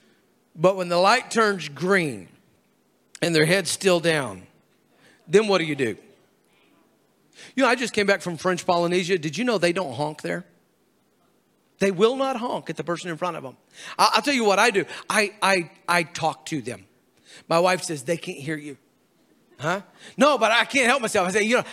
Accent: American